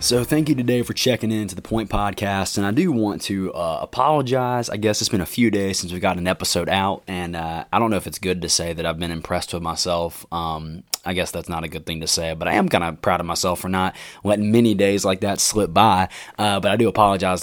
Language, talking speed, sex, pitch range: English, 270 wpm, male, 90-110 Hz